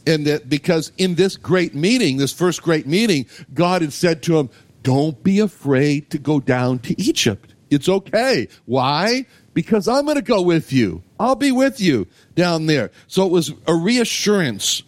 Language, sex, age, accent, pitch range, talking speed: English, male, 60-79, American, 130-180 Hz, 180 wpm